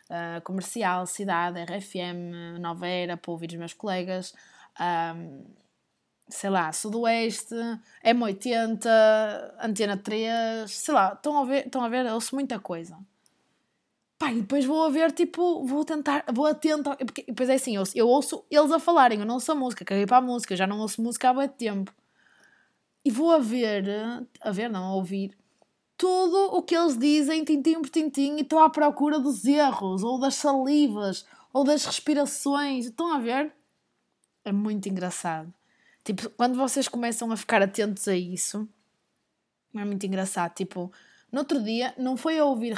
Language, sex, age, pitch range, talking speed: Portuguese, female, 20-39, 195-280 Hz, 175 wpm